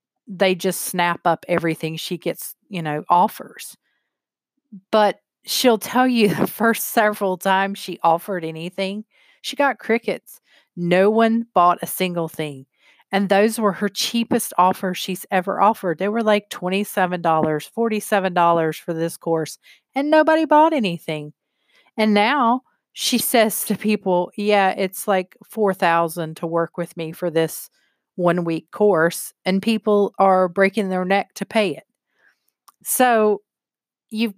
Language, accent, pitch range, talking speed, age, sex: English, American, 170-220 Hz, 140 wpm, 40-59, female